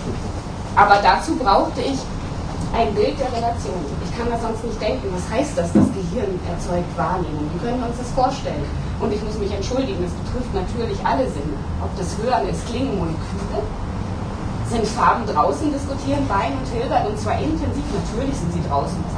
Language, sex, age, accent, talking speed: German, female, 30-49, German, 175 wpm